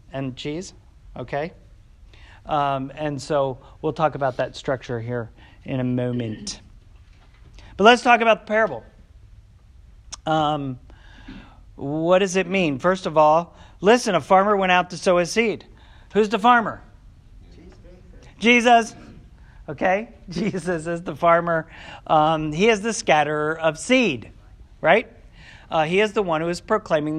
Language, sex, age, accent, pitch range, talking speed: English, male, 40-59, American, 135-190 Hz, 140 wpm